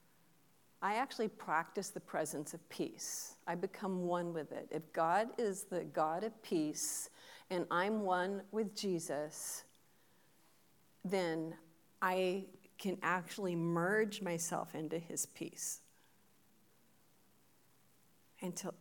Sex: female